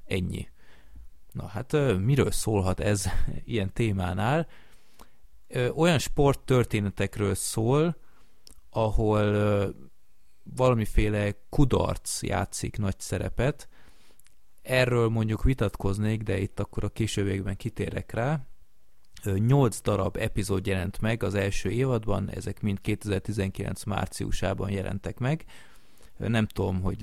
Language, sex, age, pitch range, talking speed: Hungarian, male, 30-49, 95-115 Hz, 100 wpm